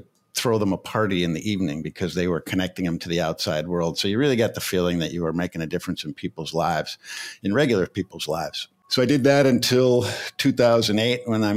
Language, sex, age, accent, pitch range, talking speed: English, male, 50-69, American, 85-110 Hz, 225 wpm